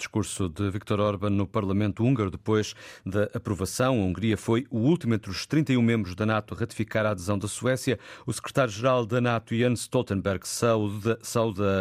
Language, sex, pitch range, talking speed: Portuguese, male, 105-130 Hz, 175 wpm